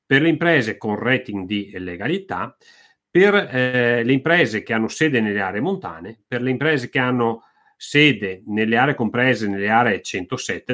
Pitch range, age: 110-175 Hz, 40-59